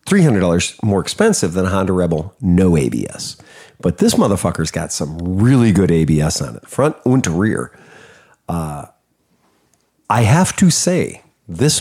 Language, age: English, 50-69